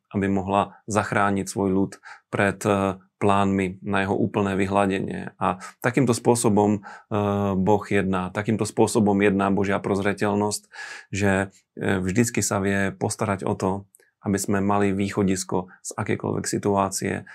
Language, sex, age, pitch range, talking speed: Slovak, male, 30-49, 95-105 Hz, 120 wpm